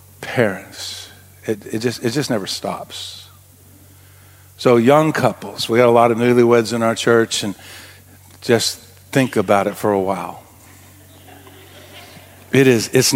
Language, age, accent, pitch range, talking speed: English, 50-69, American, 100-120 Hz, 140 wpm